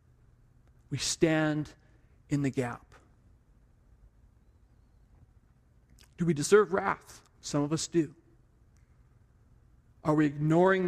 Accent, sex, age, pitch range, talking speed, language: American, male, 40-59, 120-170 Hz, 90 wpm, English